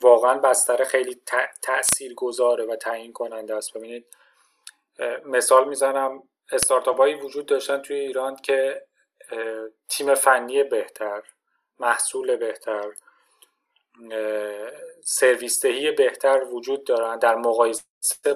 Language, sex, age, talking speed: Persian, male, 30-49, 100 wpm